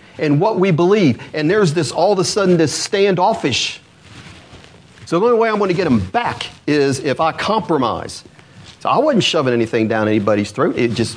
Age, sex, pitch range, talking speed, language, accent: 40-59, male, 155-240 Hz, 200 wpm, English, American